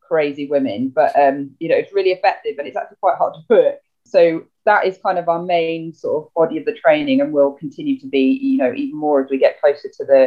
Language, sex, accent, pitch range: English, female, British, 160-245 Hz